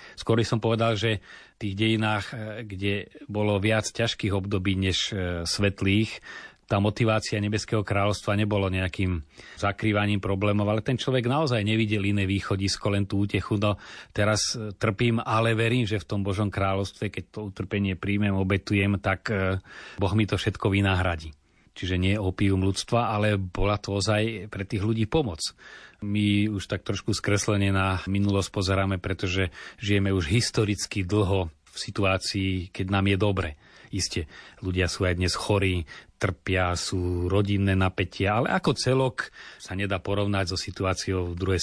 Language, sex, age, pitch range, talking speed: Slovak, male, 30-49, 95-105 Hz, 150 wpm